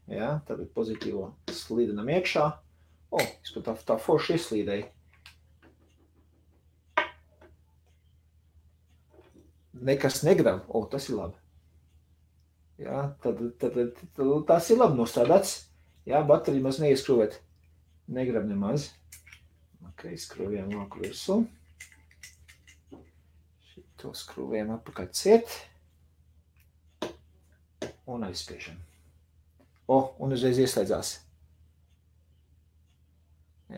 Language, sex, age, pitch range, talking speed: English, male, 40-59, 80-120 Hz, 75 wpm